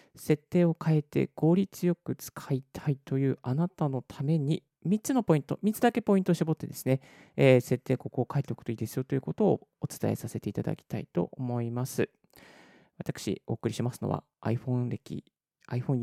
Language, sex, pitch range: Japanese, male, 120-175 Hz